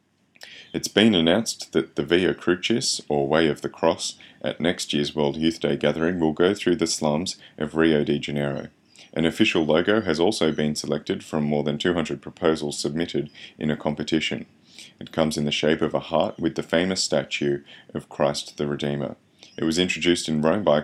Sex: male